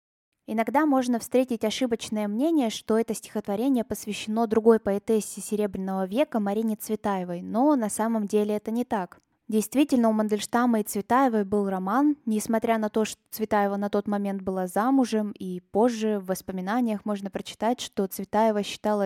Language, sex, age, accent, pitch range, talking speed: Russian, female, 20-39, native, 205-245 Hz, 150 wpm